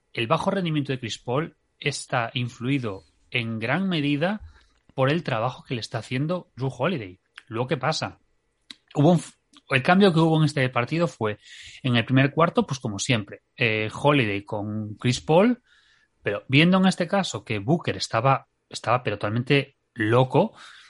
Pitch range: 110-160 Hz